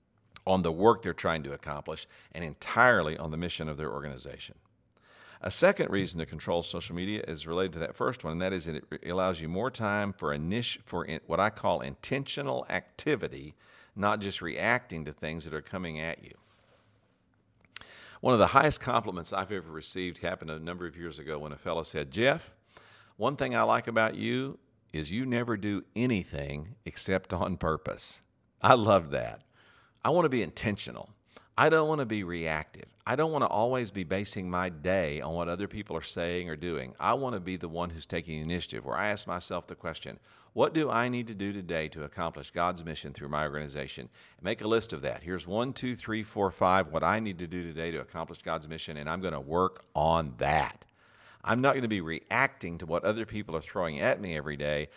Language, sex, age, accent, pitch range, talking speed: English, male, 50-69, American, 80-105 Hz, 205 wpm